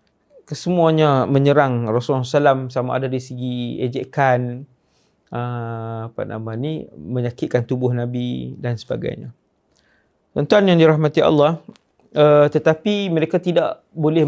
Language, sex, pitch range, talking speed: English, male, 125-150 Hz, 105 wpm